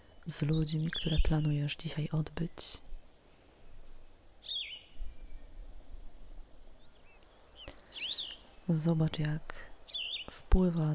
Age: 30-49